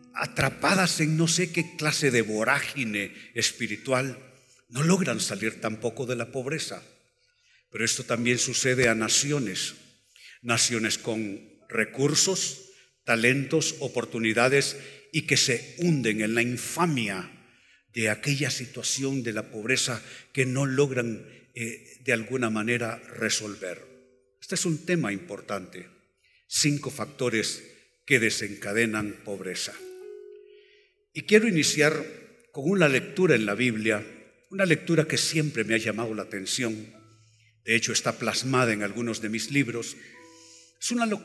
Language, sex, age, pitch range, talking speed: Spanish, male, 50-69, 115-155 Hz, 125 wpm